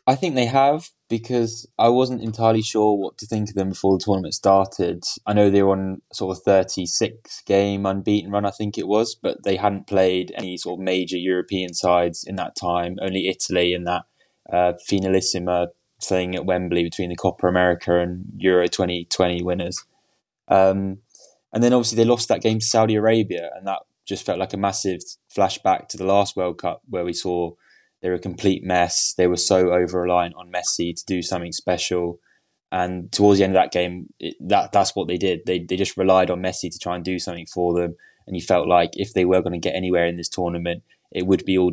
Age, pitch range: 10-29, 90-100 Hz